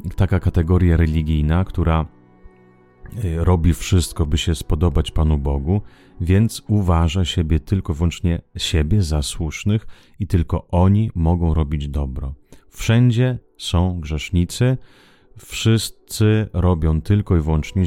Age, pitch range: 30-49, 80-100 Hz